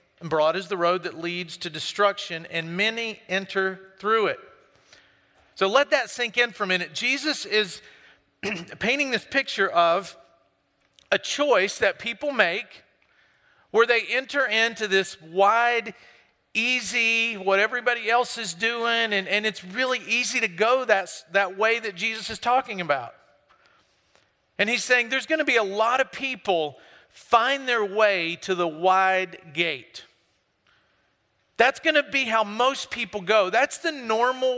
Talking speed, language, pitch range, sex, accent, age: 155 wpm, English, 180-240 Hz, male, American, 40-59